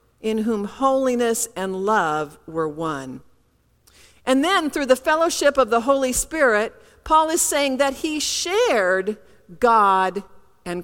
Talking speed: 135 wpm